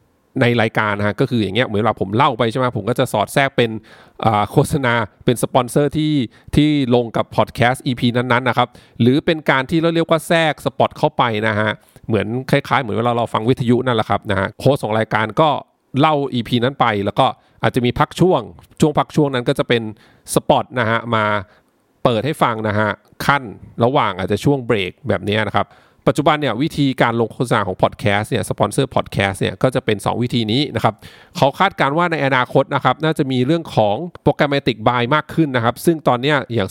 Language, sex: English, male